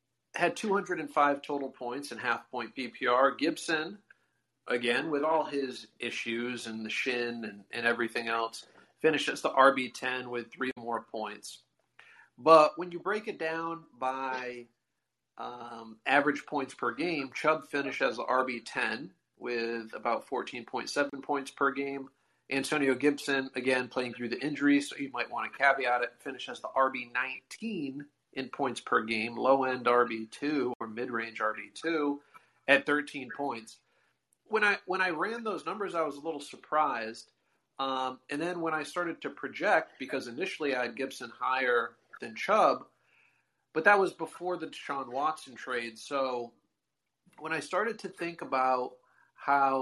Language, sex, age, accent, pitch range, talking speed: English, male, 30-49, American, 120-150 Hz, 150 wpm